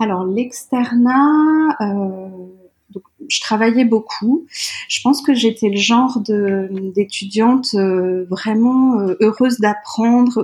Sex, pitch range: female, 185-225 Hz